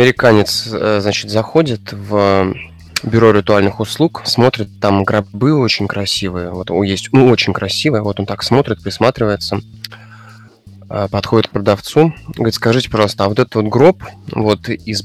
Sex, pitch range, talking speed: male, 100-115 Hz, 140 wpm